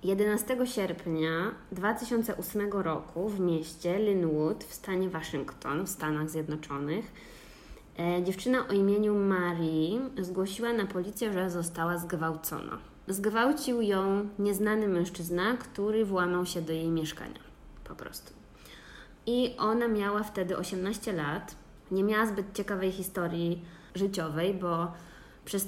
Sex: female